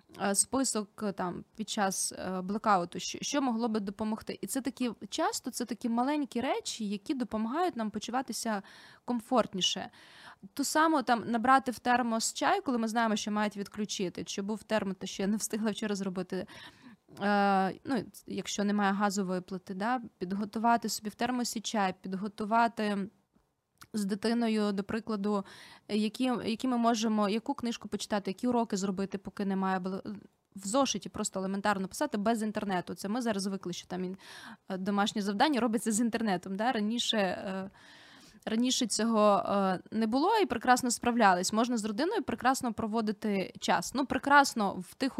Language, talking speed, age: Ukrainian, 145 wpm, 20-39